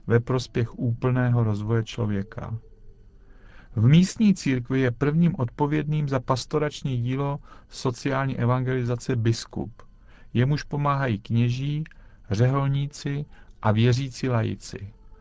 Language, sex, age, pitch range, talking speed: Czech, male, 50-69, 115-145 Hz, 95 wpm